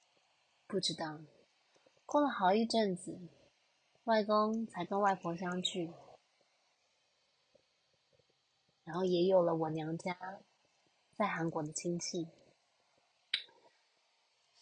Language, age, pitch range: Chinese, 20-39, 165-205 Hz